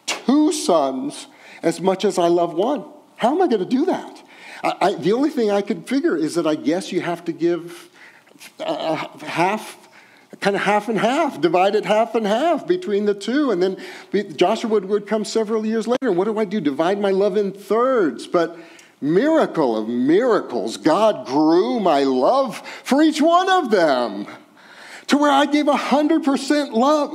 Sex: male